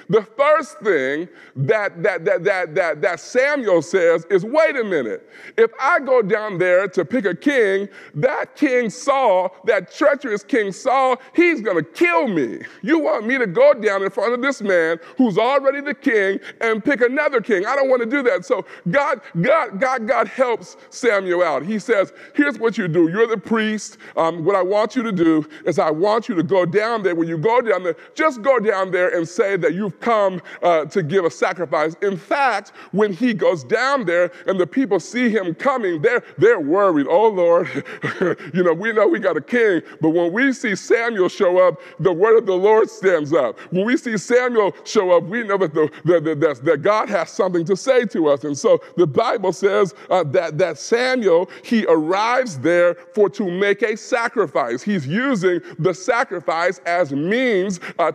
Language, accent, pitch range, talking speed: English, American, 180-265 Hz, 200 wpm